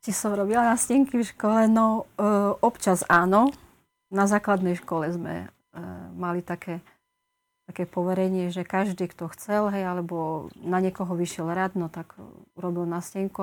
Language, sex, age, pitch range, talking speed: Slovak, female, 30-49, 185-215 Hz, 155 wpm